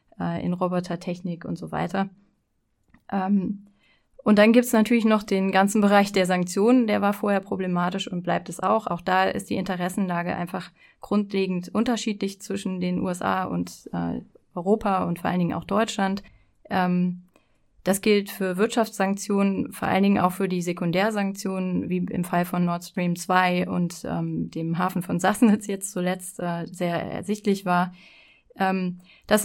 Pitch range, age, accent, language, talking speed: 180-205 Hz, 20-39, German, German, 160 wpm